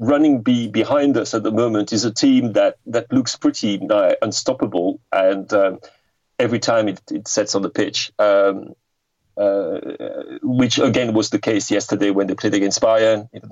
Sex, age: male, 40-59